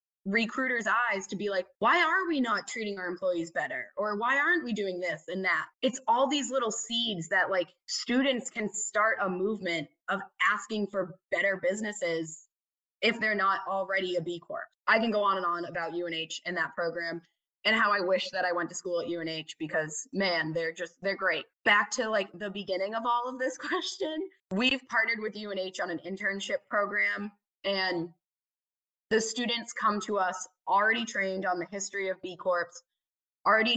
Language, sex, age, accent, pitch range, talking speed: English, female, 20-39, American, 175-215 Hz, 190 wpm